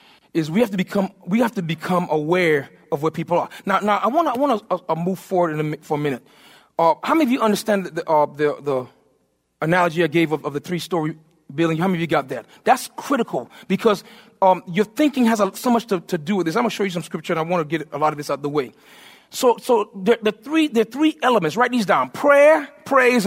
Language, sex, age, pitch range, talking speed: English, male, 30-49, 190-275 Hz, 255 wpm